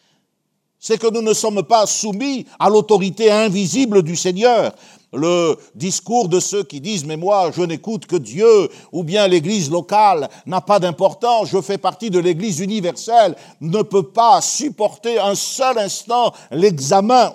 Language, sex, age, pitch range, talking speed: French, male, 60-79, 180-220 Hz, 155 wpm